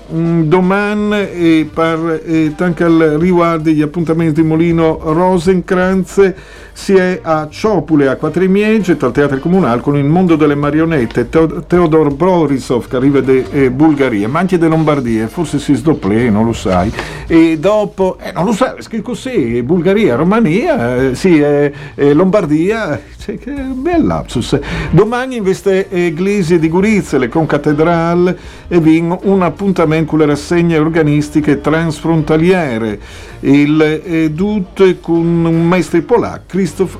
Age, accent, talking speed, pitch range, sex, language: 50-69, native, 140 wpm, 145-180 Hz, male, Italian